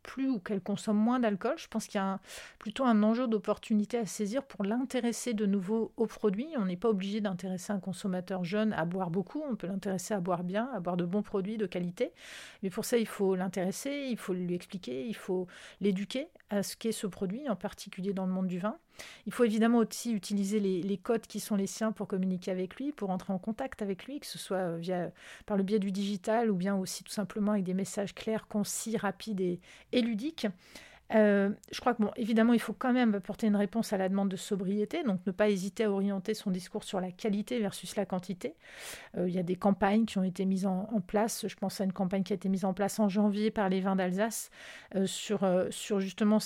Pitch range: 190-220 Hz